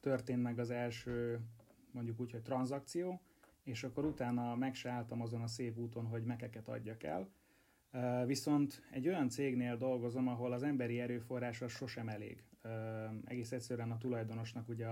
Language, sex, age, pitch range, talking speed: Hungarian, male, 30-49, 115-130 Hz, 155 wpm